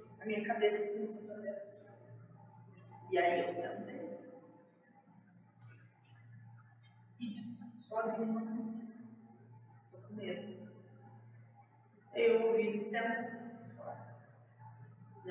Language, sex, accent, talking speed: Portuguese, female, Brazilian, 100 wpm